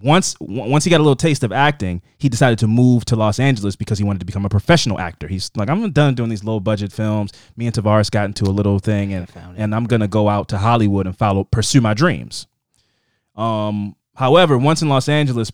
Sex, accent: male, American